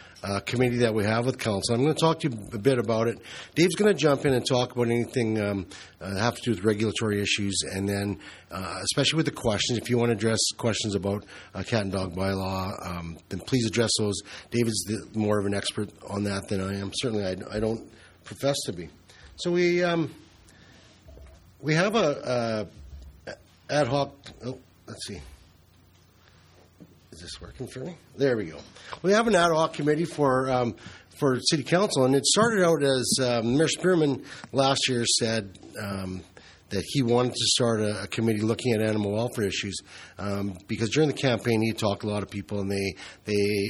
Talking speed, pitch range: 200 wpm, 100-125 Hz